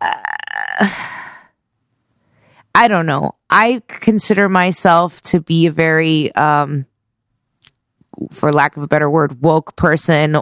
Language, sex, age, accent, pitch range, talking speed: English, female, 20-39, American, 160-215 Hz, 115 wpm